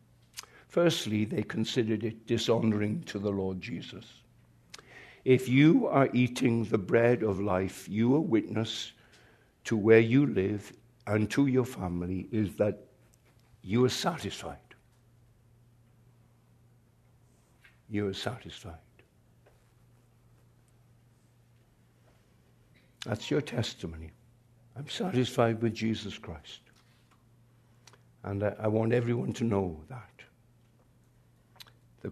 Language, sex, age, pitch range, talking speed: English, male, 60-79, 110-120 Hz, 95 wpm